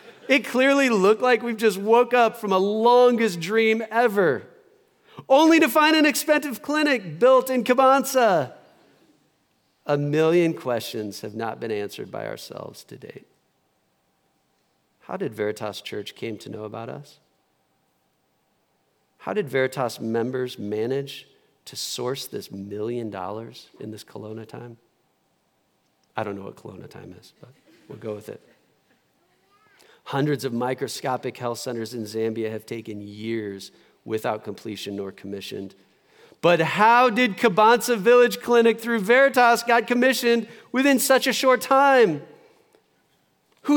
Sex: male